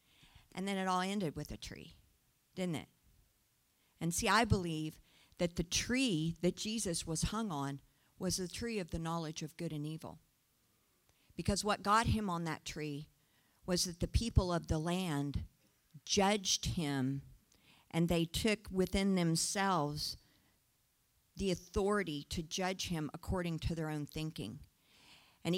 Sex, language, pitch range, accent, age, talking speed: female, English, 165-205 Hz, American, 50-69, 150 wpm